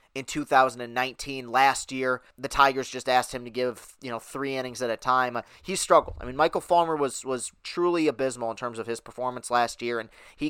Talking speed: 210 wpm